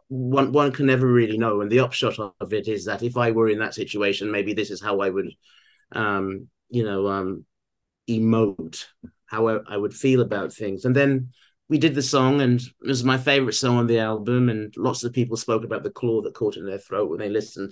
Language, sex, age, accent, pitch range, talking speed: English, male, 30-49, British, 110-130 Hz, 230 wpm